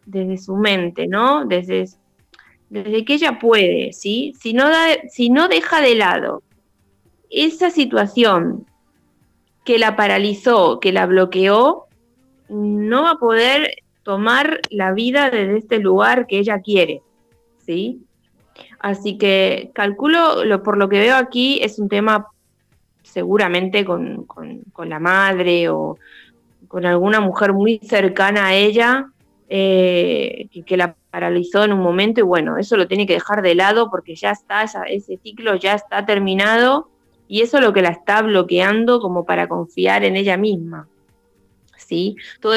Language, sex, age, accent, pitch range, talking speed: Spanish, female, 20-39, Argentinian, 185-230 Hz, 150 wpm